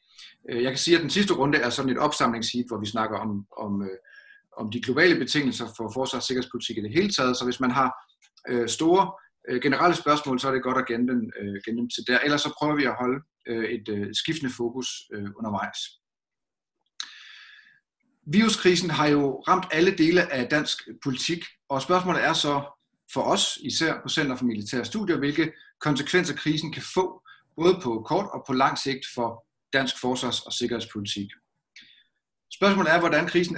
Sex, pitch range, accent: male, 120-165 Hz, native